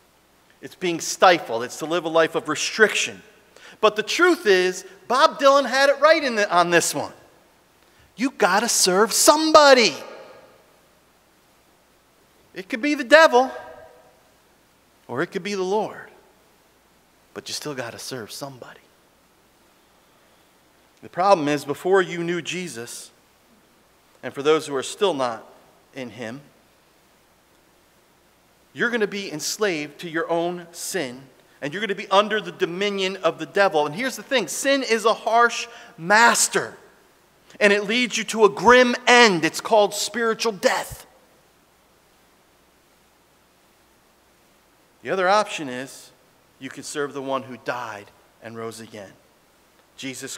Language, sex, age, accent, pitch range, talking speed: English, male, 40-59, American, 160-225 Hz, 140 wpm